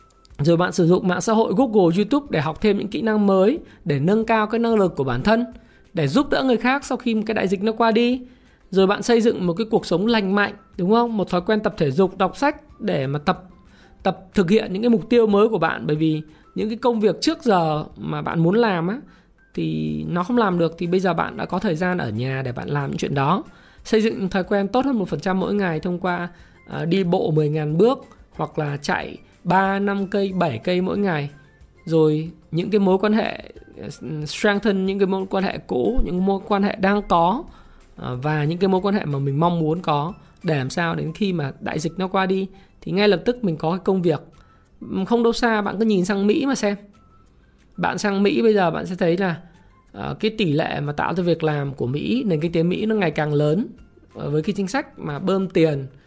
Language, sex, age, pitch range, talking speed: Vietnamese, male, 20-39, 165-215 Hz, 240 wpm